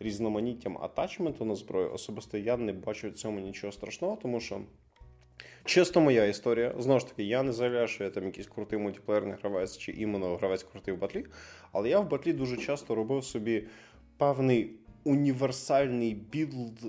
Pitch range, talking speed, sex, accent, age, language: 110-155 Hz, 165 wpm, male, native, 20-39, Russian